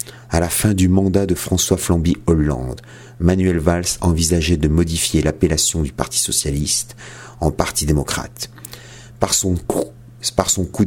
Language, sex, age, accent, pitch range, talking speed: French, male, 40-59, French, 85-110 Hz, 150 wpm